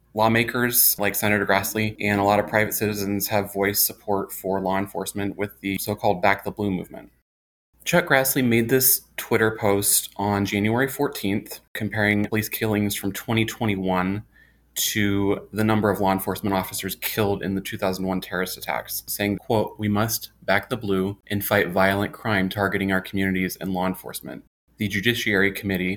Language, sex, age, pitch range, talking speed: English, male, 20-39, 95-110 Hz, 160 wpm